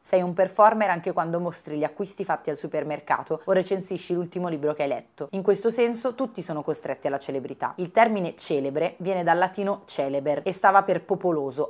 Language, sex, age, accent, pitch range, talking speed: English, female, 30-49, Italian, 150-190 Hz, 190 wpm